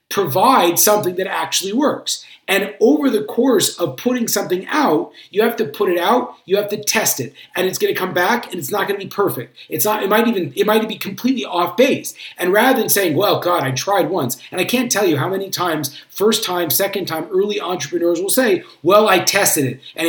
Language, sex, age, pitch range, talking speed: English, male, 40-59, 175-225 Hz, 225 wpm